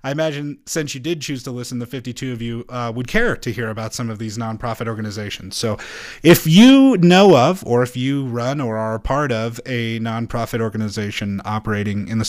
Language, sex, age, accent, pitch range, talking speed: English, male, 30-49, American, 110-130 Hz, 205 wpm